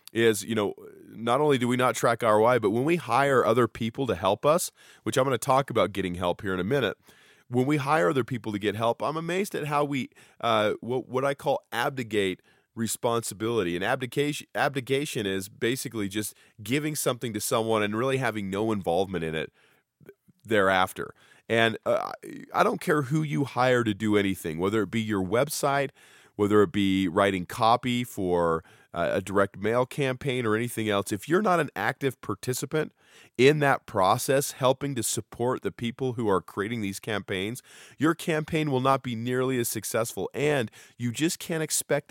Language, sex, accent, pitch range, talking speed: English, male, American, 100-135 Hz, 185 wpm